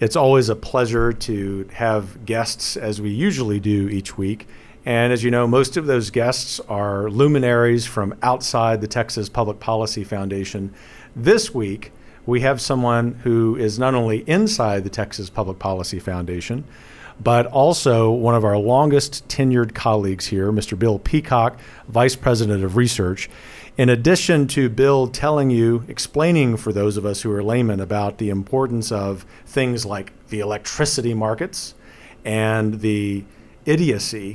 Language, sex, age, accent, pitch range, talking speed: English, male, 50-69, American, 105-125 Hz, 150 wpm